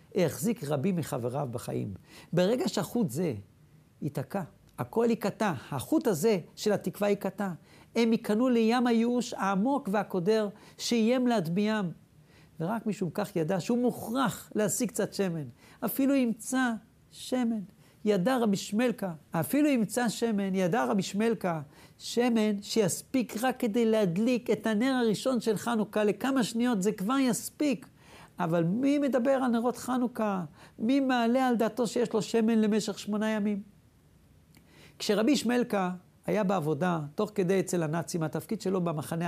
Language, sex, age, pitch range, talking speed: Hebrew, male, 60-79, 180-235 Hz, 130 wpm